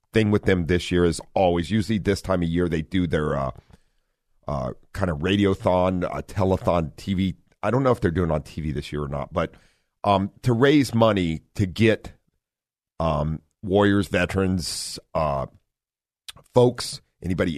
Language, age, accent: English, 50-69, American